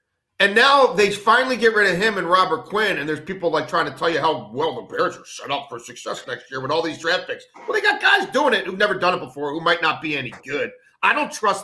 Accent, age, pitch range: American, 40-59, 170-290 Hz